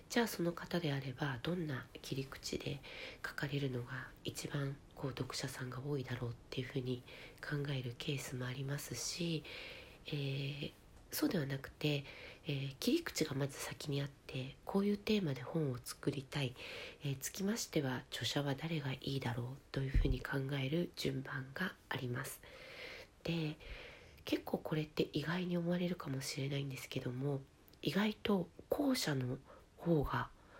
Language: Japanese